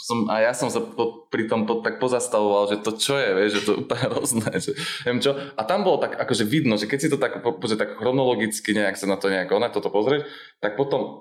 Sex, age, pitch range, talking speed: male, 20-39, 105-140 Hz, 250 wpm